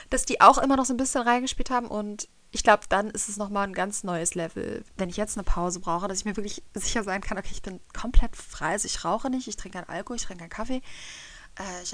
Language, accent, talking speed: German, German, 260 wpm